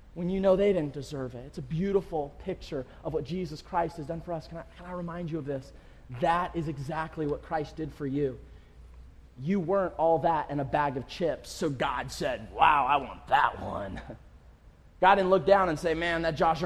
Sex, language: male, English